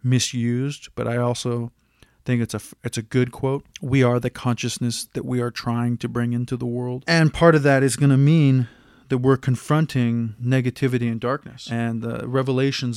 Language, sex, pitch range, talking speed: English, male, 120-135 Hz, 185 wpm